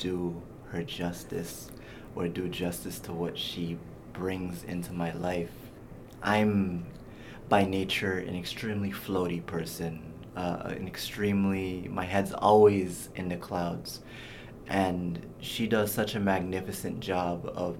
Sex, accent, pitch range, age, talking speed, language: male, American, 90-110 Hz, 20-39, 125 wpm, English